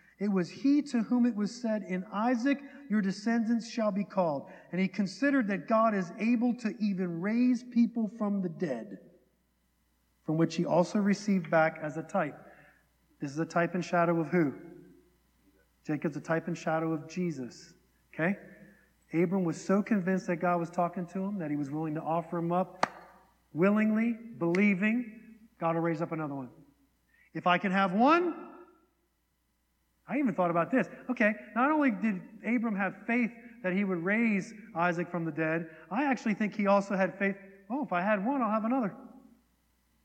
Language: English